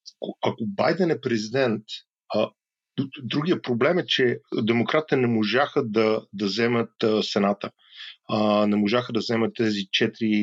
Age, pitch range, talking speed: 40-59, 105-130 Hz, 140 wpm